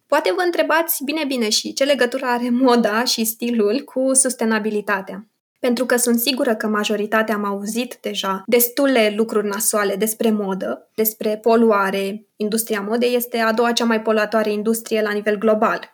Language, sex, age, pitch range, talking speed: Romanian, female, 20-39, 215-280 Hz, 155 wpm